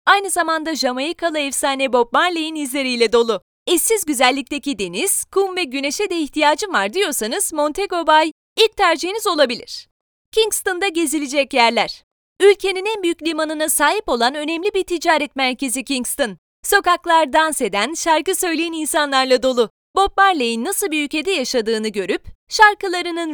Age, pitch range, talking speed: 30-49, 275-365 Hz, 135 wpm